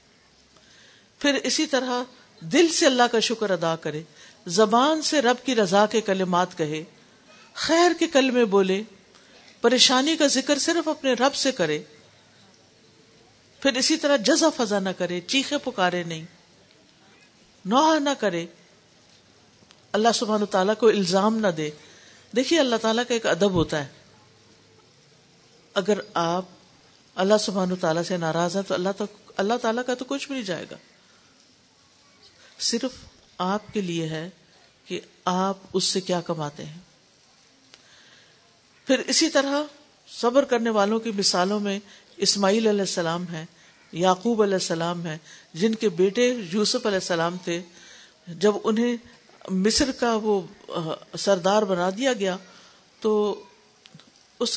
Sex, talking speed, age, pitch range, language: female, 135 wpm, 50-69, 175-245 Hz, Urdu